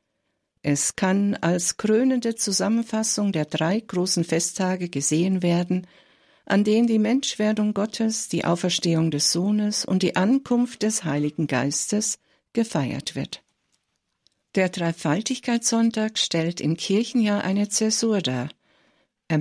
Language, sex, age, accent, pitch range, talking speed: German, female, 60-79, German, 165-225 Hz, 115 wpm